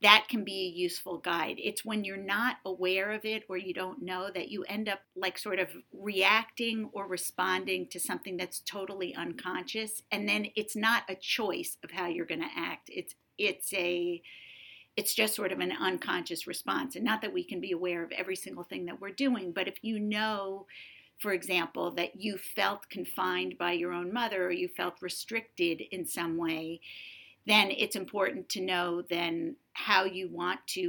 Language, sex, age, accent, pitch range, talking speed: English, female, 50-69, American, 180-210 Hz, 190 wpm